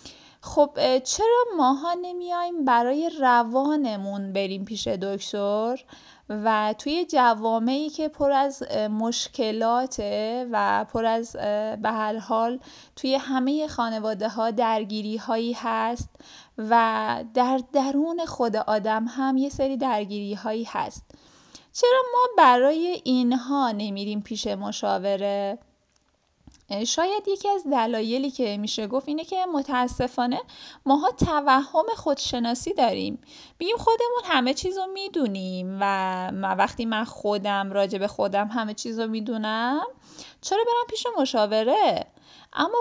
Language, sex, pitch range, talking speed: Persian, female, 220-295 Hz, 115 wpm